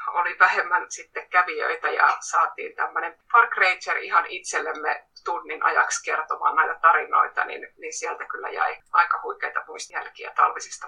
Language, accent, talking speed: Finnish, native, 140 wpm